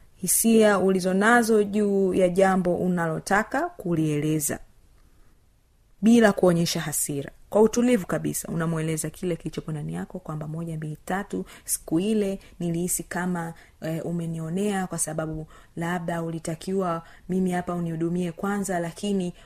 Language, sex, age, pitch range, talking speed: Swahili, female, 30-49, 175-210 Hz, 110 wpm